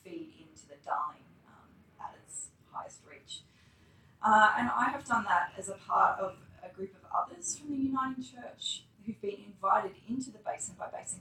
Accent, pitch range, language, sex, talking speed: Australian, 170-225 Hz, English, female, 185 wpm